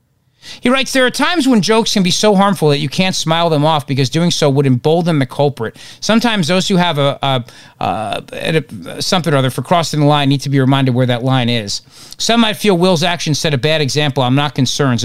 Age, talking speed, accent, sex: 40-59, 235 wpm, American, male